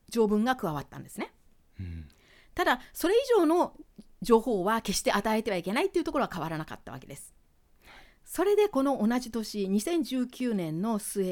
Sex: female